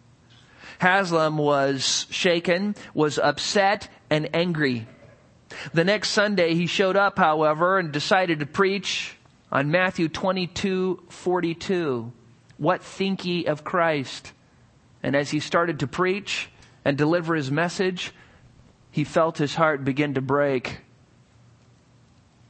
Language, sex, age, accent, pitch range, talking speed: English, male, 40-59, American, 130-170 Hz, 115 wpm